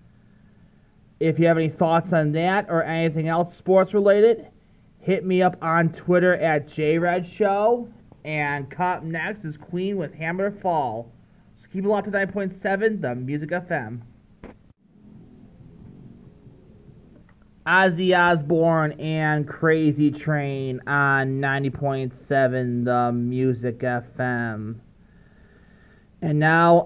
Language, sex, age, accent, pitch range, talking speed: English, male, 30-49, American, 140-185 Hz, 110 wpm